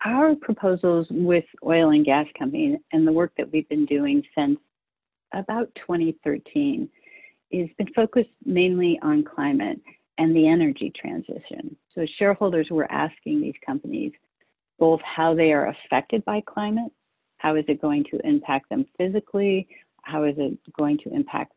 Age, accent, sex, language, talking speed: 40-59, American, female, English, 150 wpm